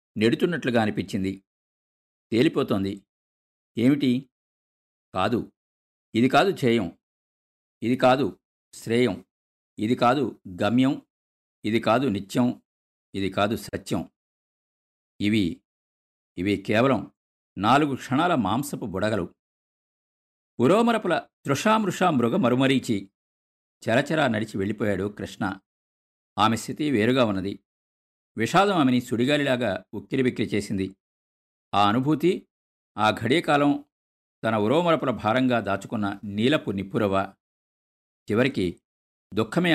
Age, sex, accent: 50-69, male, native